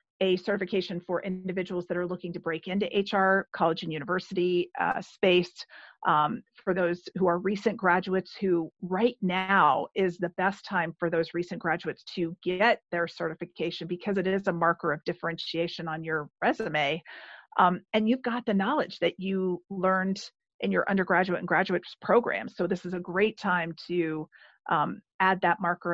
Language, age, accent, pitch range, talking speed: English, 40-59, American, 175-205 Hz, 170 wpm